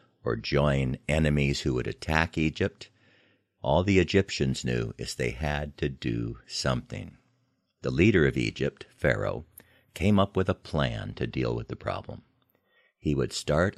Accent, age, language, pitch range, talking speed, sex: American, 60-79, English, 65-95 Hz, 150 wpm, male